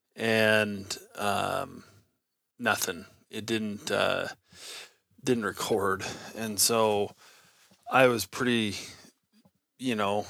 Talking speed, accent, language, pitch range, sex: 85 wpm, American, English, 100-115 Hz, male